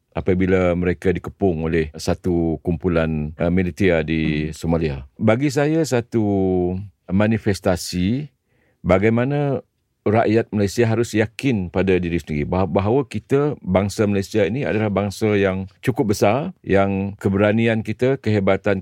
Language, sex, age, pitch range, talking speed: Malay, male, 50-69, 90-115 Hz, 115 wpm